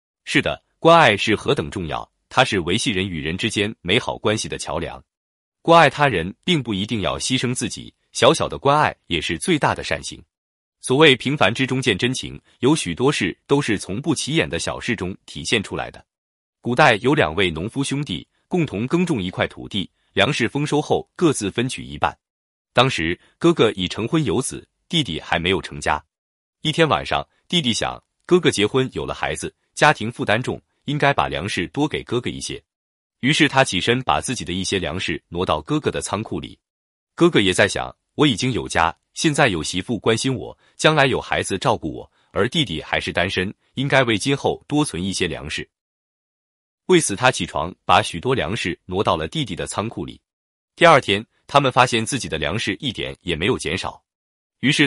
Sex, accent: male, native